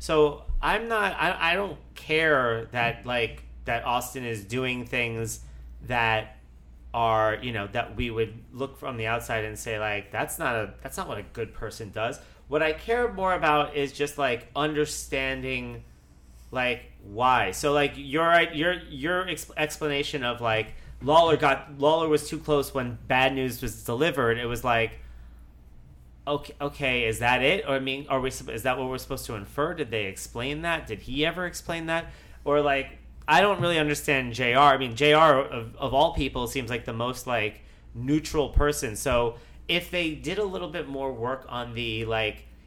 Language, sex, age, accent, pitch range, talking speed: English, male, 30-49, American, 115-150 Hz, 185 wpm